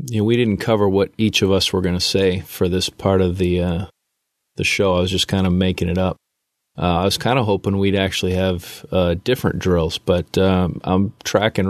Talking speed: 230 wpm